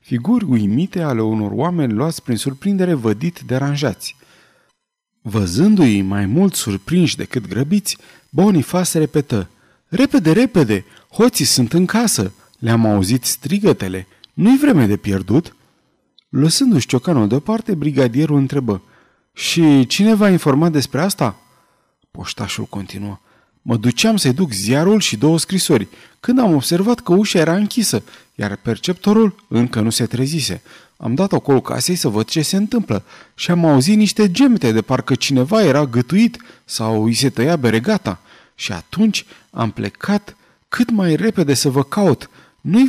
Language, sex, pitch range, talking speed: Romanian, male, 115-185 Hz, 140 wpm